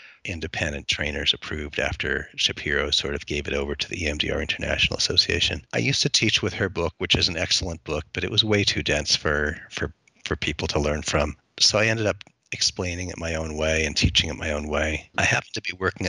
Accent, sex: American, male